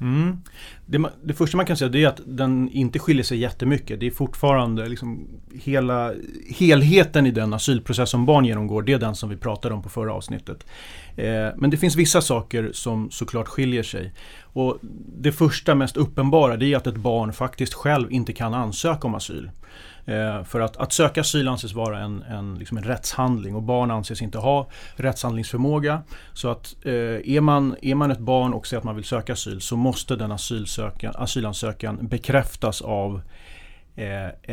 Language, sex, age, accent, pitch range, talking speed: Swedish, male, 30-49, native, 110-135 Hz, 185 wpm